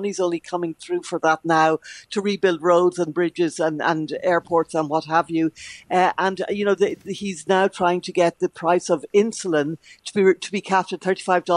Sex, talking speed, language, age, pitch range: female, 200 wpm, English, 60-79, 165-195 Hz